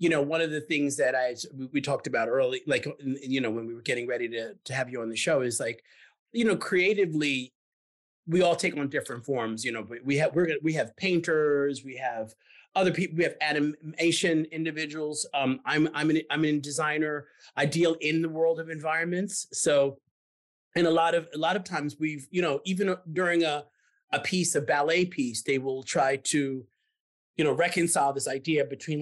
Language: English